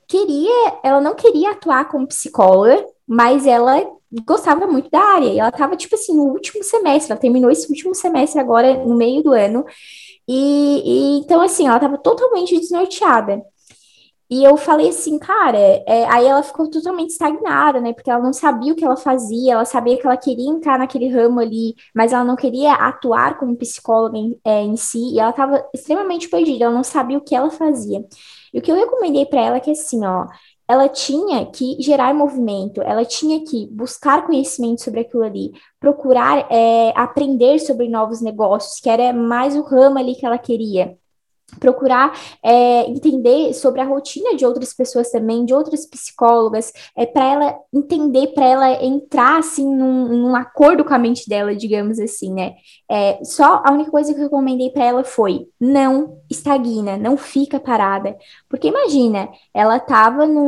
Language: Portuguese